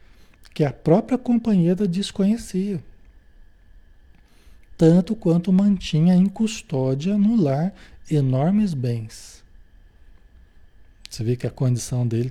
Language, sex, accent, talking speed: Portuguese, male, Brazilian, 95 wpm